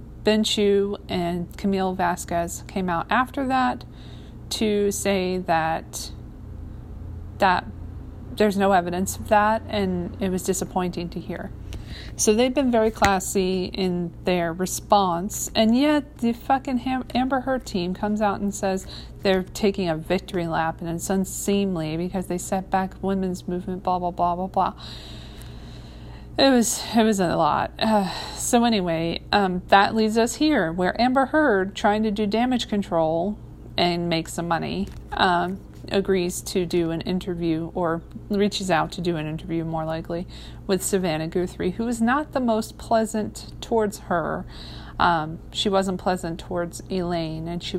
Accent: American